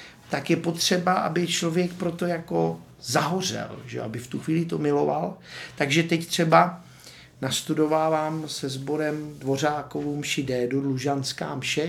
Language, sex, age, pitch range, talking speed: Czech, male, 50-69, 130-150 Hz, 130 wpm